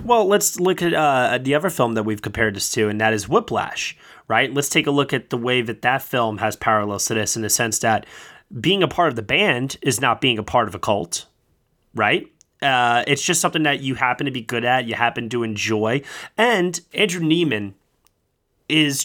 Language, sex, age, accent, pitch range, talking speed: English, male, 20-39, American, 110-145 Hz, 215 wpm